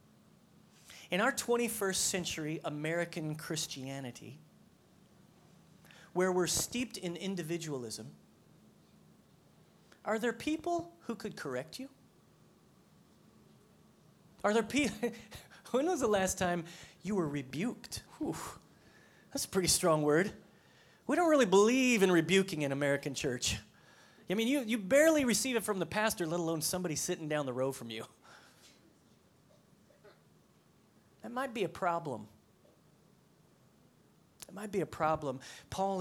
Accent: American